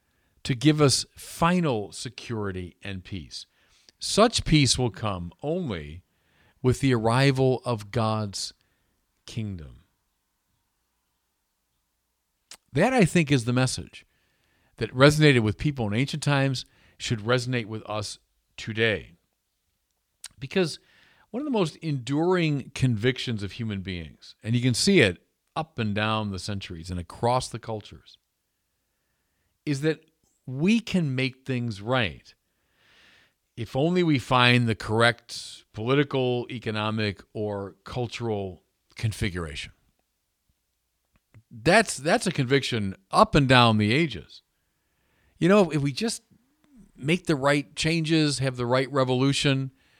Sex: male